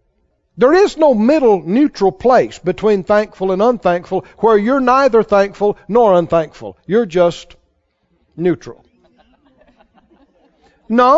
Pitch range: 185-260 Hz